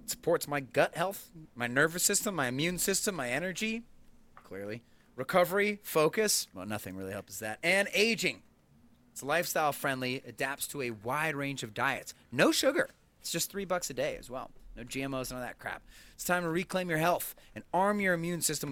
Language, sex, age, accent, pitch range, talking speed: English, male, 30-49, American, 120-180 Hz, 190 wpm